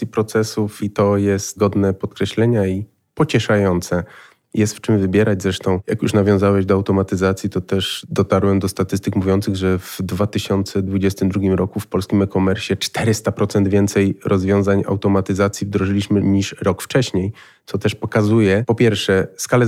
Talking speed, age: 140 wpm, 30-49